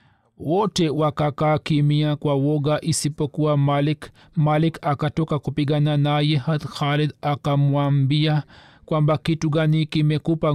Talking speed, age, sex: 100 wpm, 40-59, male